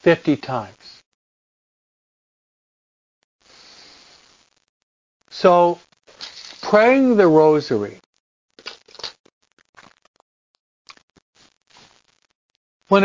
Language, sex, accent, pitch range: English, male, American, 145-185 Hz